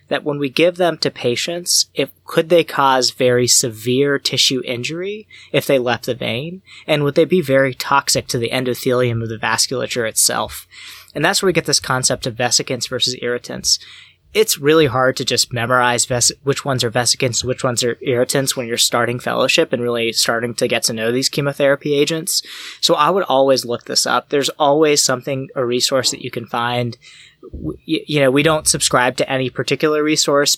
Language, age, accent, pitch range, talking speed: English, 20-39, American, 125-145 Hz, 190 wpm